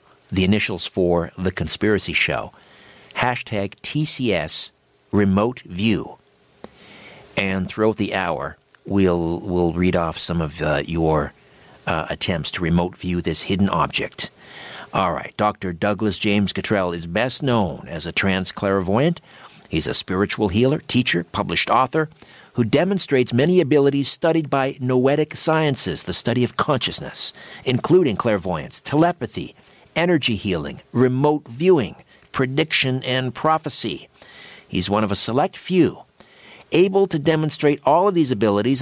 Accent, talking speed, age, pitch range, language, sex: American, 130 wpm, 50-69, 100-145 Hz, English, male